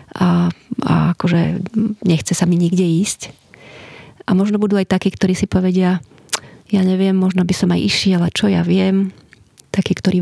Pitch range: 180-195 Hz